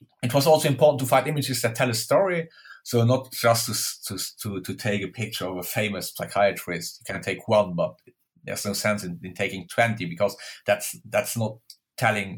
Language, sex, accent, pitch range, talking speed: English, male, German, 105-125 Hz, 200 wpm